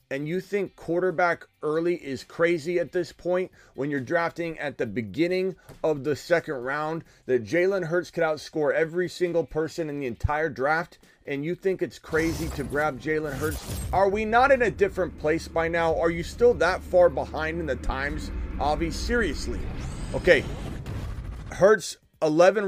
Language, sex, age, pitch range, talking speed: English, male, 30-49, 110-170 Hz, 170 wpm